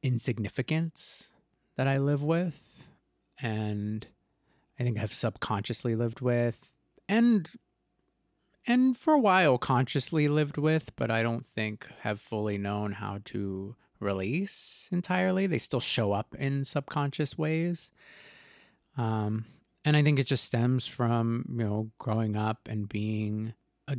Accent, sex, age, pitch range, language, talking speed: American, male, 30-49, 105-130 Hz, English, 135 wpm